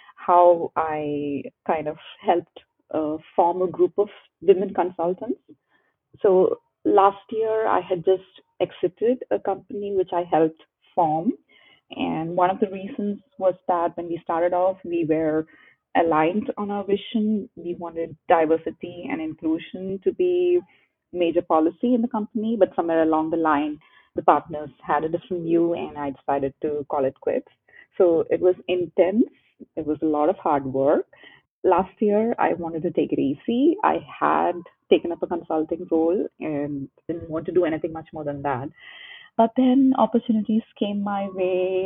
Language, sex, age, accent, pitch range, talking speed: English, female, 30-49, Indian, 165-205 Hz, 165 wpm